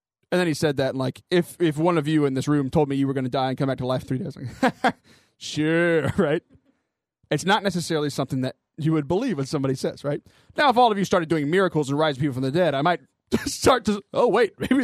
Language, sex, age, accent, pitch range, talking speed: English, male, 20-39, American, 140-185 Hz, 265 wpm